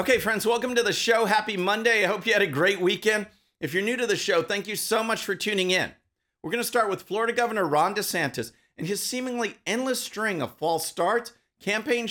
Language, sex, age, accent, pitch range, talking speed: English, male, 50-69, American, 150-210 Hz, 230 wpm